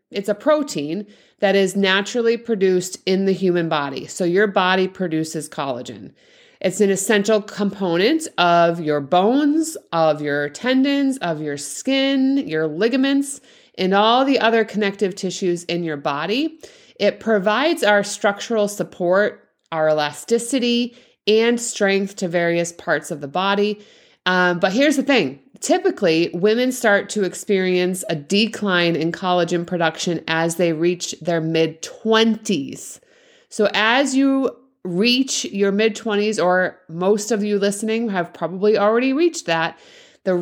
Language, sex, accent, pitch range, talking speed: English, female, American, 175-225 Hz, 135 wpm